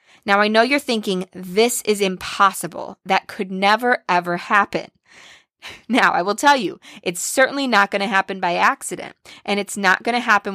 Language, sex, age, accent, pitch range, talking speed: English, female, 20-39, American, 185-225 Hz, 180 wpm